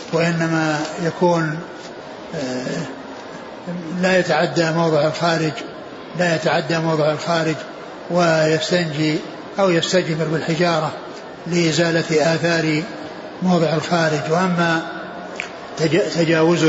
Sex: male